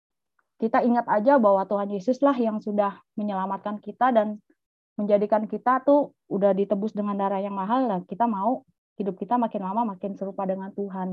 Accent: native